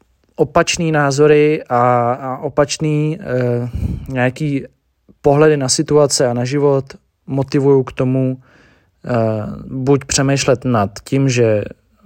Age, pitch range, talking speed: 20-39, 110-135 Hz, 100 wpm